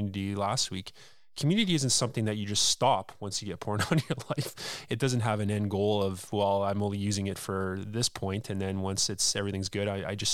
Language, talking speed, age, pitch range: English, 230 wpm, 20-39, 100-120 Hz